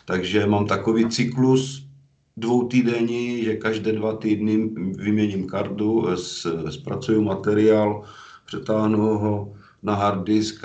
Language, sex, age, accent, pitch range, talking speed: Czech, male, 50-69, native, 100-120 Hz, 105 wpm